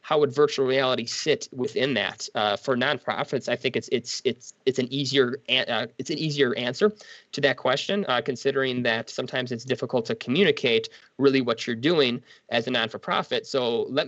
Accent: American